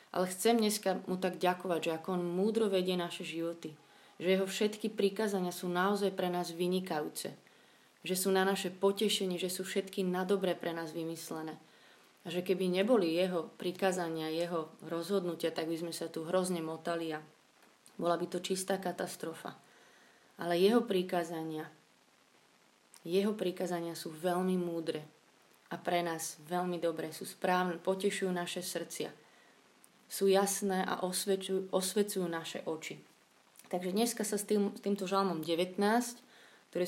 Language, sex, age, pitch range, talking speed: Slovak, female, 30-49, 170-190 Hz, 145 wpm